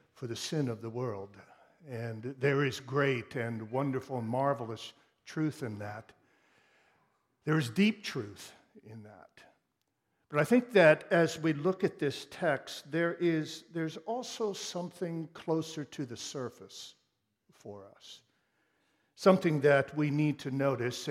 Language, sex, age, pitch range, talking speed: English, male, 60-79, 135-185 Hz, 140 wpm